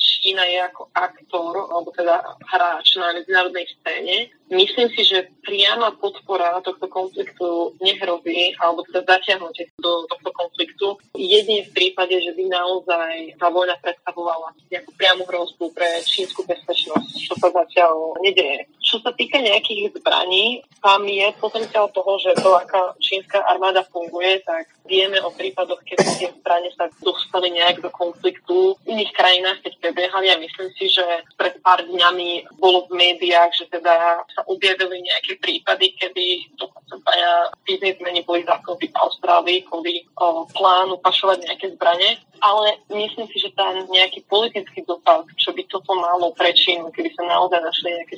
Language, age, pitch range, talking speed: Slovak, 20-39, 175-195 Hz, 150 wpm